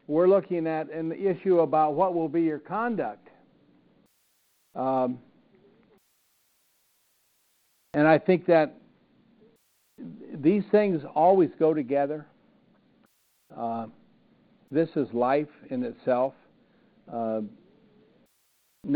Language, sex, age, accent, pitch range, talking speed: English, male, 50-69, American, 140-190 Hz, 90 wpm